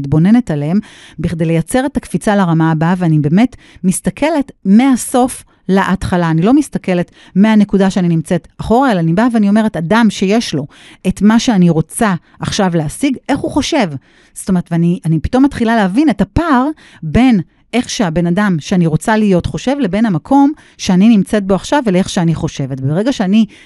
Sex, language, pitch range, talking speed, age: female, Hebrew, 165-230 Hz, 160 wpm, 40-59